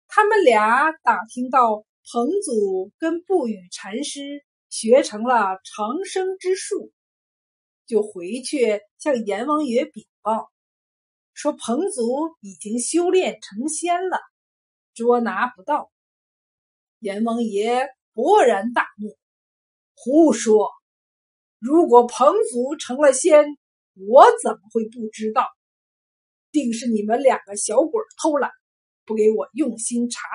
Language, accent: Chinese, native